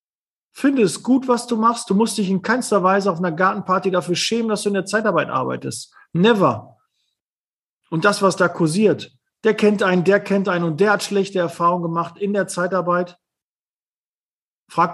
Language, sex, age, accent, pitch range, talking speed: German, male, 40-59, German, 150-210 Hz, 180 wpm